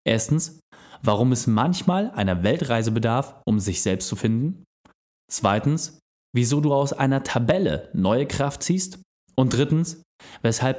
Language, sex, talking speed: German, male, 135 wpm